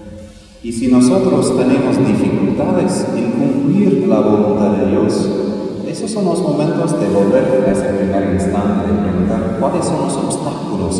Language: Spanish